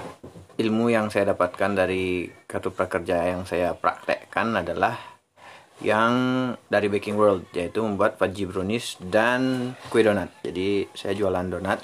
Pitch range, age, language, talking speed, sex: 95-110 Hz, 30-49, Indonesian, 130 wpm, male